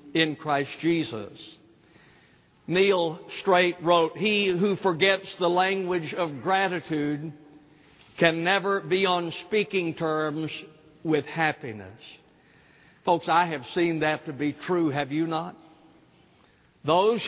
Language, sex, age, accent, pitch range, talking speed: English, male, 60-79, American, 135-165 Hz, 115 wpm